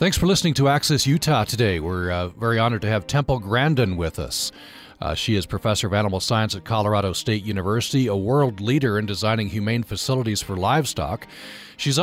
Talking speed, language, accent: 190 wpm, English, American